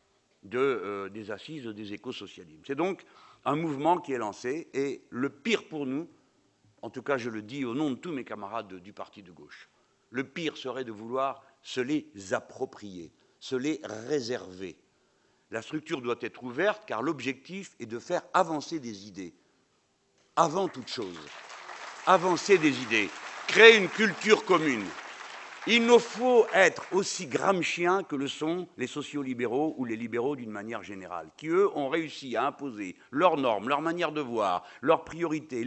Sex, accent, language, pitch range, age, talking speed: male, French, French, 125-180 Hz, 60-79, 170 wpm